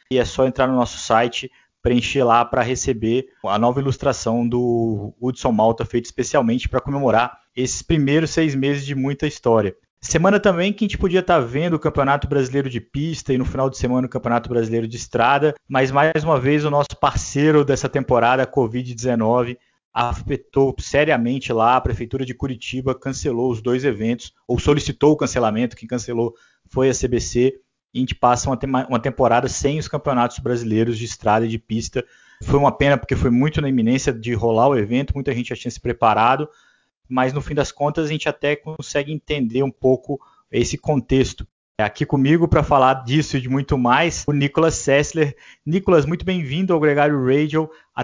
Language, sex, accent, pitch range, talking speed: Portuguese, male, Brazilian, 120-150 Hz, 185 wpm